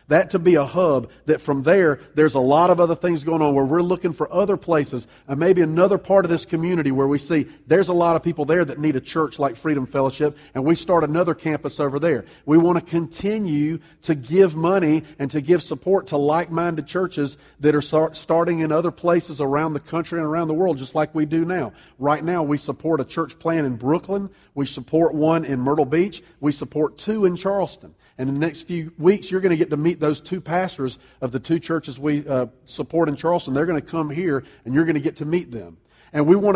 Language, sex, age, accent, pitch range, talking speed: English, male, 40-59, American, 145-175 Hz, 235 wpm